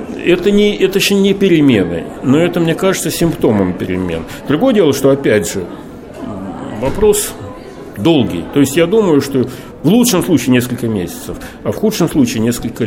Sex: male